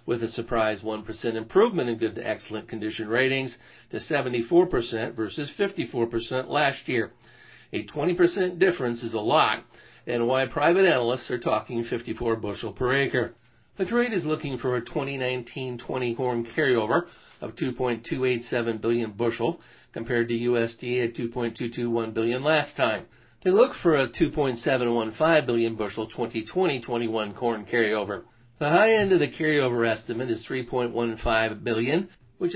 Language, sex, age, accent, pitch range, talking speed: English, male, 60-79, American, 115-130 Hz, 140 wpm